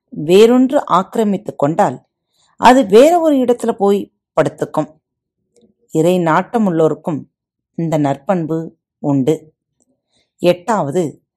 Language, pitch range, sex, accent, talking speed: Tamil, 155-235 Hz, female, native, 80 wpm